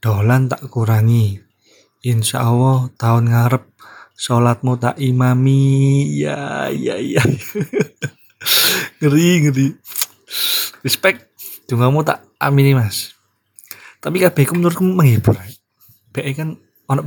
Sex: male